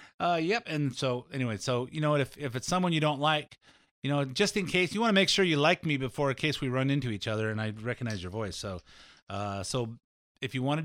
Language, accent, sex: English, American, male